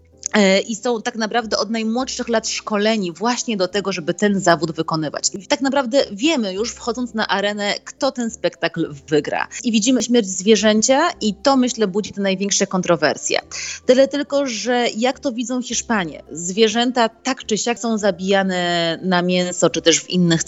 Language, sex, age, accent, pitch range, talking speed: Polish, female, 30-49, native, 180-245 Hz, 165 wpm